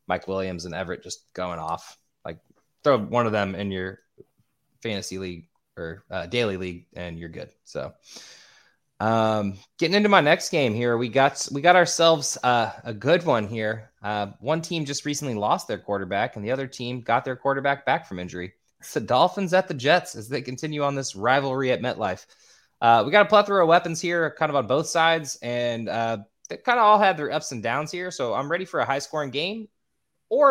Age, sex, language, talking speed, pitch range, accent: 20-39, male, English, 210 wpm, 105-140 Hz, American